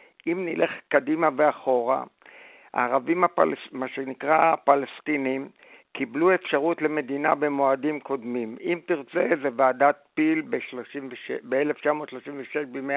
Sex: male